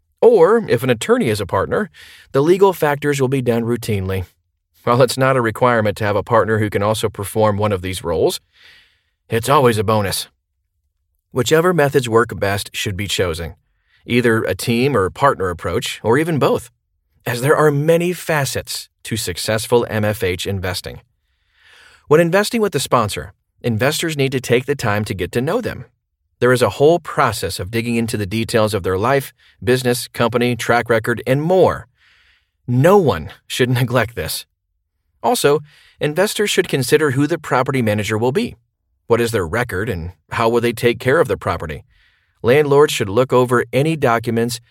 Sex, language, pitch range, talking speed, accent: male, English, 100-140 Hz, 175 wpm, American